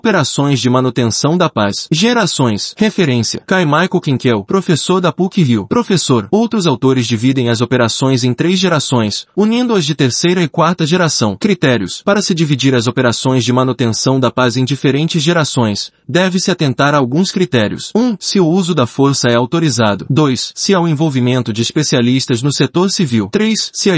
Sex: male